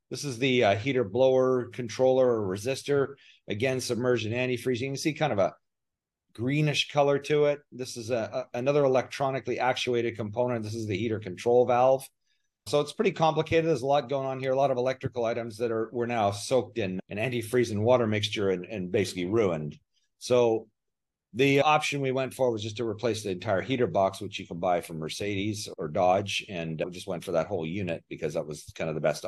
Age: 40-59